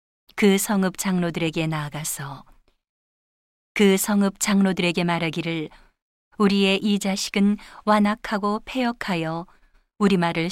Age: 40-59